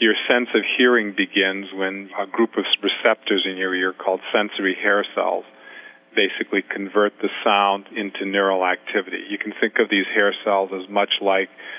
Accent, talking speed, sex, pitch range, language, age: American, 175 wpm, male, 95-100 Hz, English, 50-69